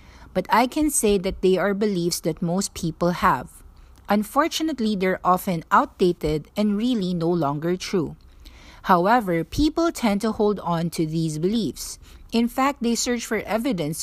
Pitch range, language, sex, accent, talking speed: 170-230 Hz, English, female, Filipino, 155 wpm